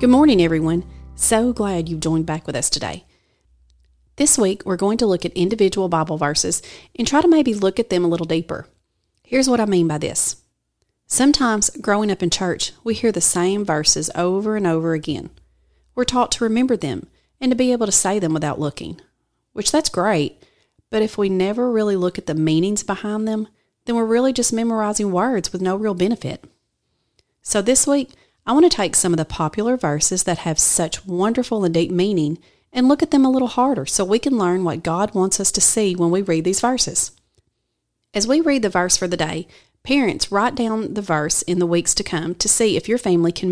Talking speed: 210 wpm